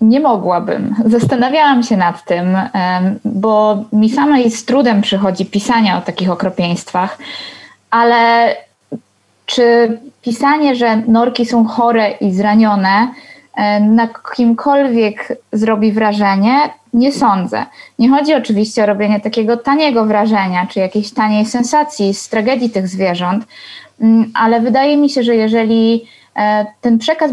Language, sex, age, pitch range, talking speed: Polish, female, 20-39, 210-245 Hz, 120 wpm